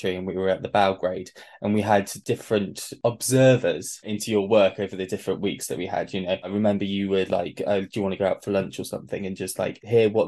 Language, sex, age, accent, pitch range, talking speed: English, male, 20-39, British, 95-105 Hz, 255 wpm